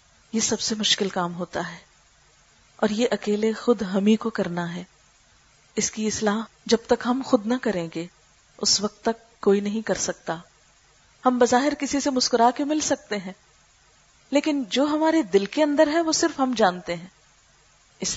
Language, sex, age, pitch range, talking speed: Urdu, female, 40-59, 205-270 Hz, 180 wpm